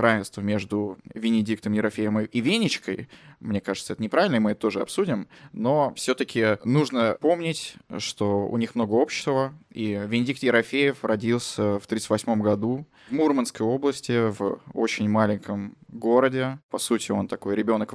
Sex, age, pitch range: male, 20-39, 105-120 Hz